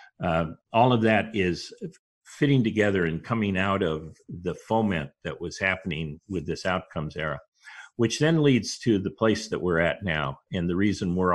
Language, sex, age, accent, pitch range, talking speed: English, male, 50-69, American, 90-115 Hz, 180 wpm